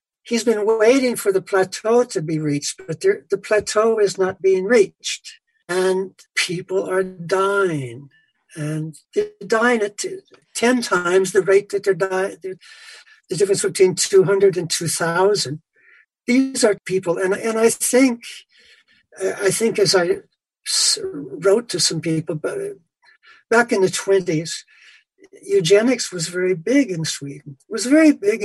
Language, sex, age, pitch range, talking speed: English, male, 60-79, 170-280 Hz, 135 wpm